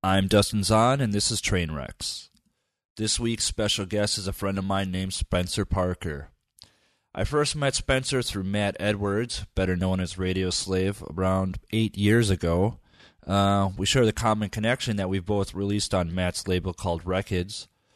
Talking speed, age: 165 wpm, 30-49